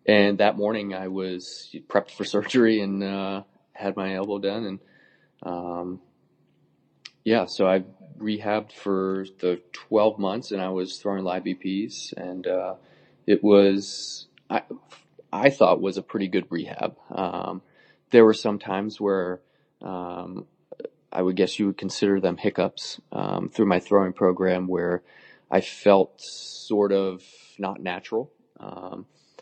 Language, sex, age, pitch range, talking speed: English, male, 20-39, 90-100 Hz, 145 wpm